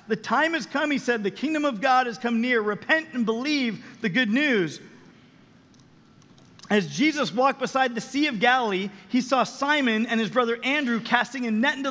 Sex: male